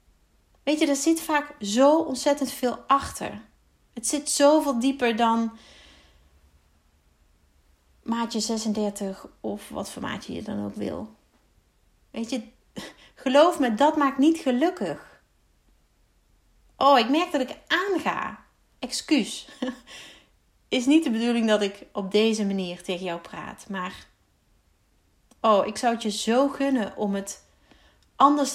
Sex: female